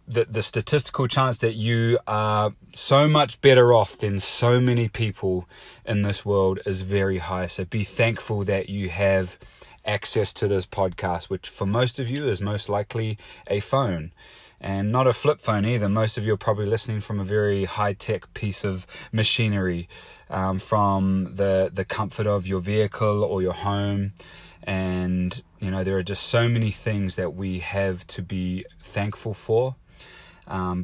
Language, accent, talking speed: English, Australian, 170 wpm